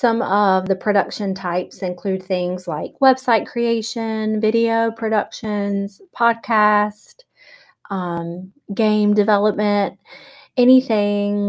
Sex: female